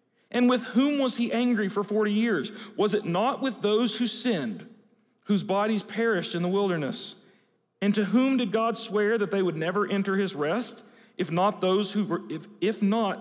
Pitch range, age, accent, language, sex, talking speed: 195-235 Hz, 40-59, American, English, male, 195 wpm